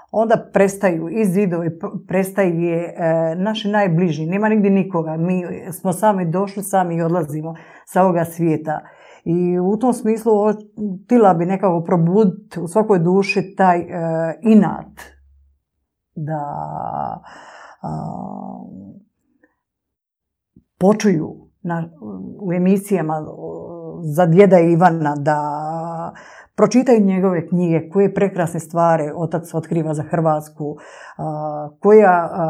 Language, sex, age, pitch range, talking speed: Croatian, female, 50-69, 160-195 Hz, 95 wpm